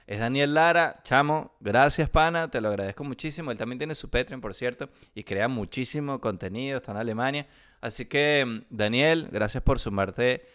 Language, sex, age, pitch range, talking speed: Spanish, male, 20-39, 105-145 Hz, 170 wpm